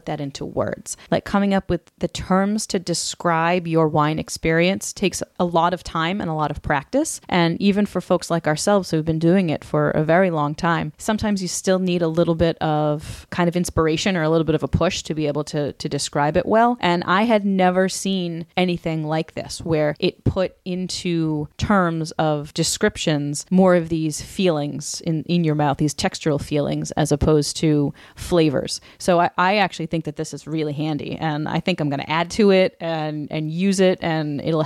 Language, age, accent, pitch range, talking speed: English, 30-49, American, 150-180 Hz, 210 wpm